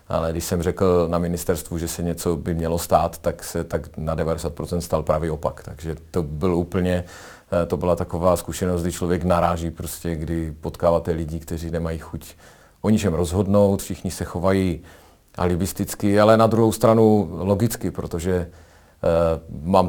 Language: Czech